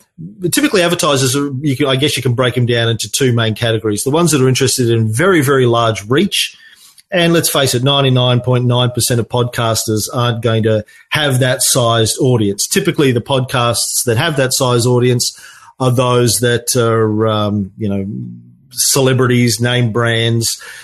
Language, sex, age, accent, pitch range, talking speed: English, male, 40-59, Australian, 115-140 Hz, 170 wpm